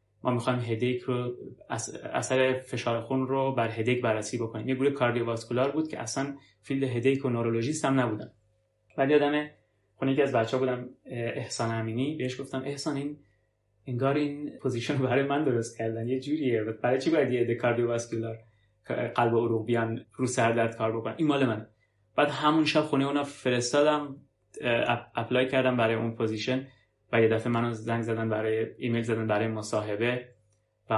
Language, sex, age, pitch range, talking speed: Persian, male, 20-39, 110-130 Hz, 160 wpm